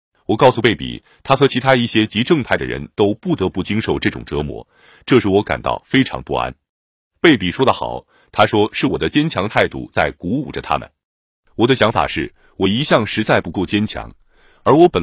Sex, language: male, Chinese